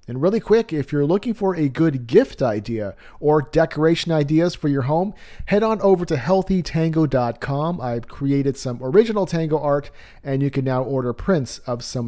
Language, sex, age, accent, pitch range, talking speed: English, male, 40-59, American, 125-175 Hz, 180 wpm